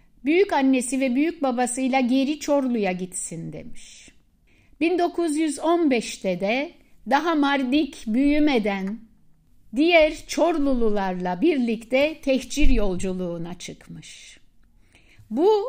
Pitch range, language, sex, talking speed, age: 240-310 Hz, Turkish, female, 80 wpm, 60-79